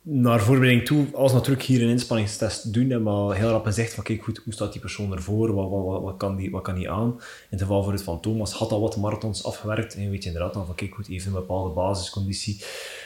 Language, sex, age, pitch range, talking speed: Dutch, male, 20-39, 95-115 Hz, 265 wpm